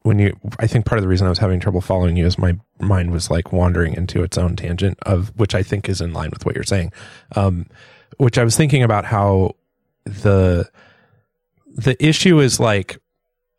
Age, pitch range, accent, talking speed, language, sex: 30-49, 90-110 Hz, American, 210 wpm, English, male